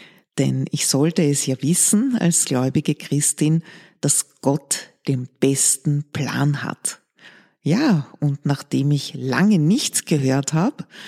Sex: female